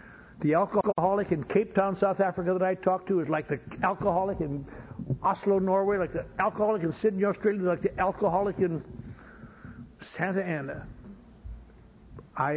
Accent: American